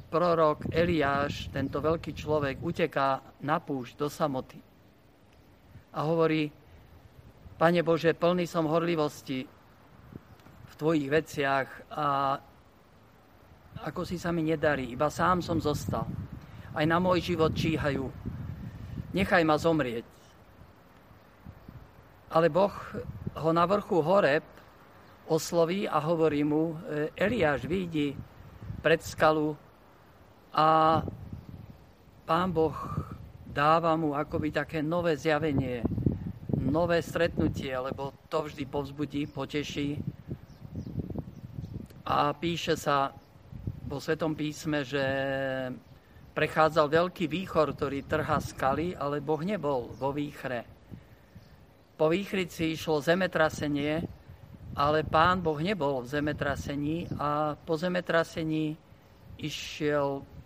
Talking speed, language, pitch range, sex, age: 100 wpm, Slovak, 135-160 Hz, male, 50-69